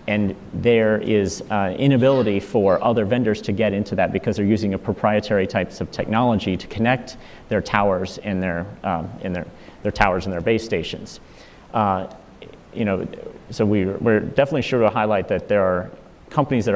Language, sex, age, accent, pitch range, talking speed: English, male, 30-49, American, 95-110 Hz, 180 wpm